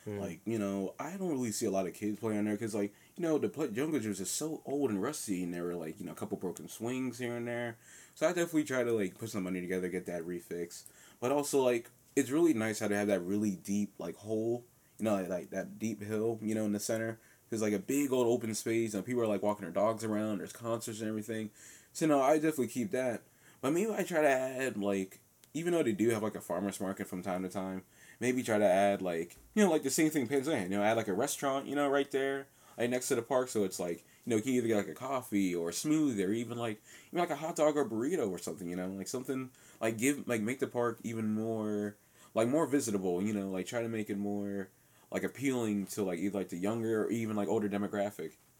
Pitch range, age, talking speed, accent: 100-125 Hz, 20-39, 265 wpm, American